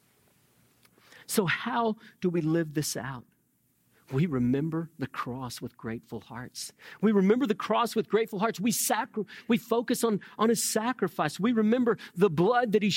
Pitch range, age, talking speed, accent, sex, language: 165-220 Hz, 40-59, 155 wpm, American, male, English